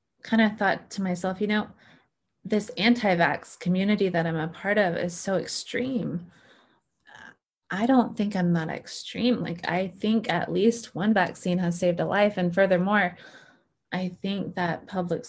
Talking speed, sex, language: 160 wpm, female, English